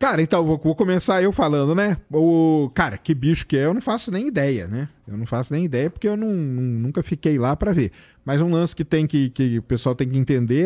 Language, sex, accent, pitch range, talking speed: Portuguese, male, Brazilian, 130-165 Hz, 230 wpm